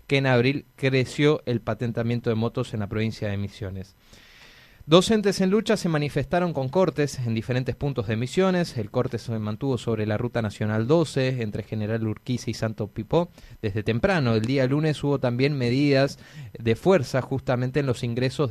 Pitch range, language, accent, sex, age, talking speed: 115-150 Hz, Spanish, Argentinian, male, 20-39, 175 wpm